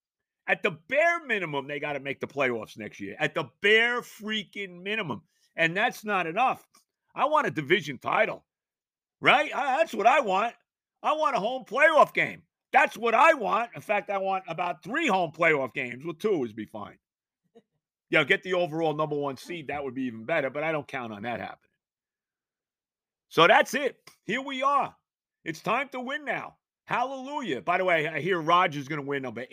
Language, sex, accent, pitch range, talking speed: English, male, American, 130-190 Hz, 195 wpm